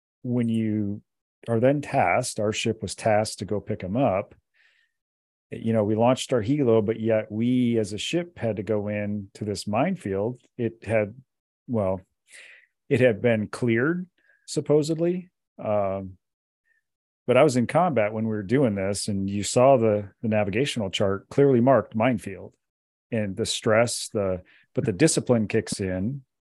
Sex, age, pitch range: male, 40-59, 100-125 Hz